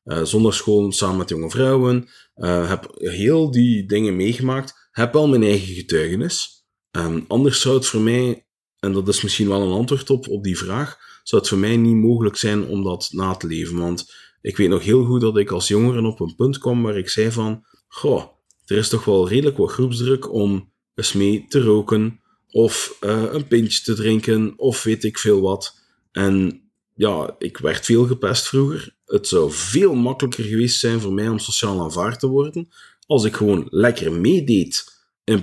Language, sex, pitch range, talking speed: Dutch, male, 95-120 Hz, 195 wpm